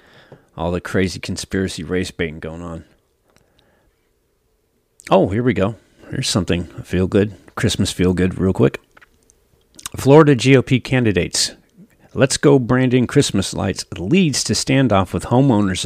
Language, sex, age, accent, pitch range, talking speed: English, male, 40-59, American, 90-115 Hz, 135 wpm